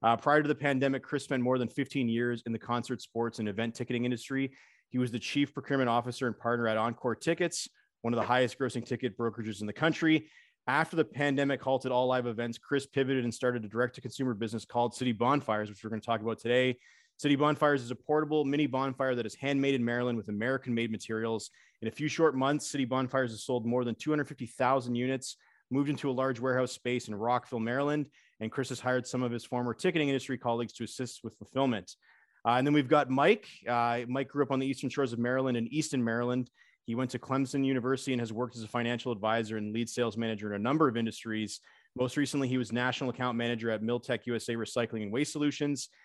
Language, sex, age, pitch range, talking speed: English, male, 30-49, 120-135 Hz, 220 wpm